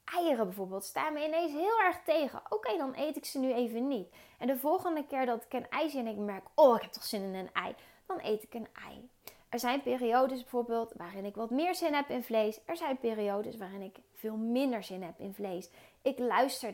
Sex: female